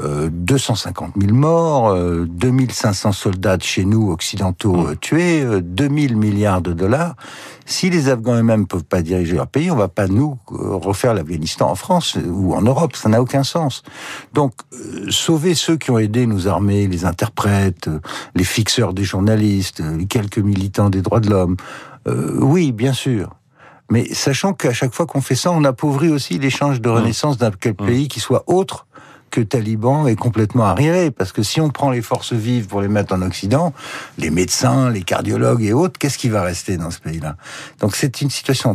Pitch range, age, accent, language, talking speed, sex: 100-135 Hz, 60-79, French, French, 180 wpm, male